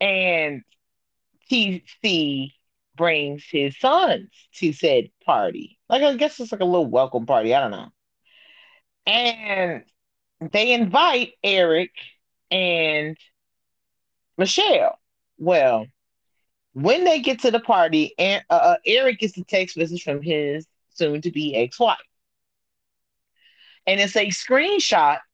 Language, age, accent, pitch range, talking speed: English, 30-49, American, 145-230 Hz, 115 wpm